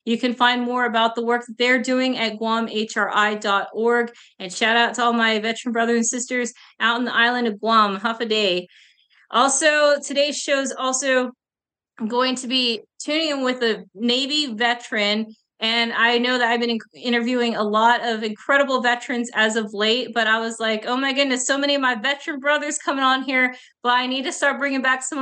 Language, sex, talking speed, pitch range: English, female, 200 wpm, 235-275 Hz